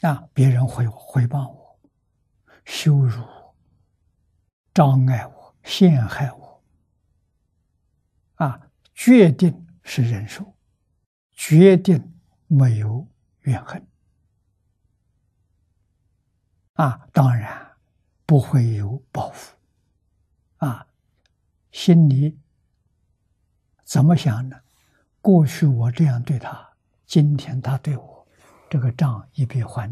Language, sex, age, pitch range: Chinese, male, 60-79, 95-145 Hz